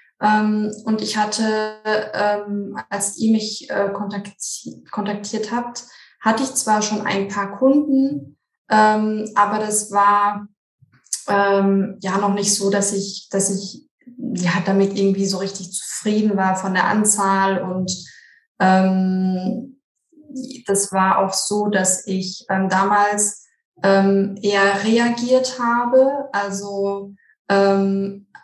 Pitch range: 195-225 Hz